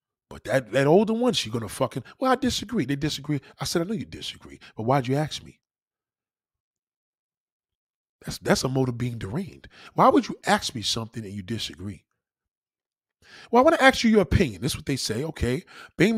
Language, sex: English, male